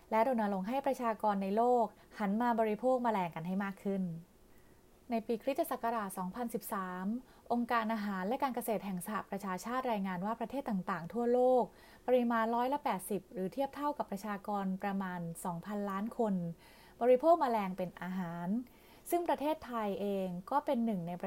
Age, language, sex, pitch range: 20-39, Thai, female, 190-245 Hz